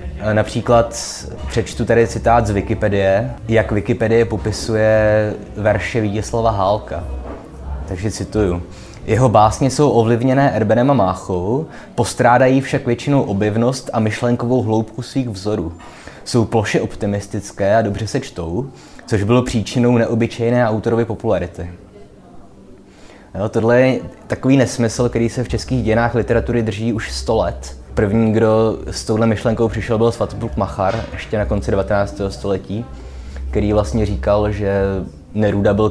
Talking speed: 130 wpm